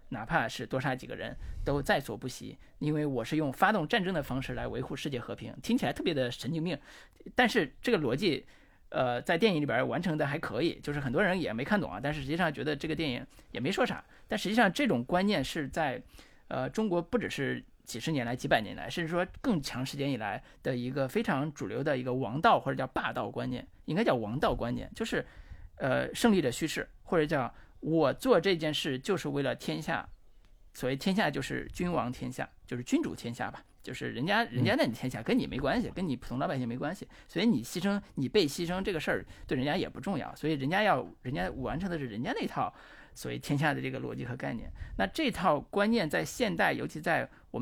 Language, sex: Chinese, male